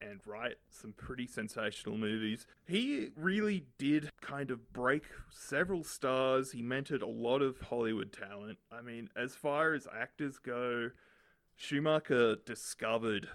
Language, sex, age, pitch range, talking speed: English, male, 30-49, 110-140 Hz, 135 wpm